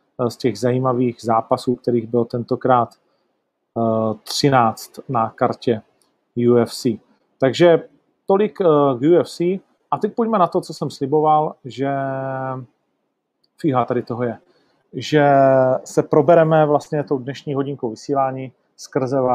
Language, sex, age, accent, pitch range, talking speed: Czech, male, 40-59, native, 125-155 Hz, 115 wpm